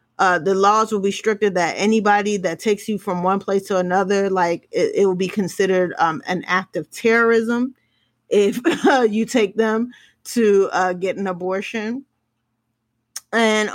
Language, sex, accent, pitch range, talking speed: English, female, American, 185-245 Hz, 165 wpm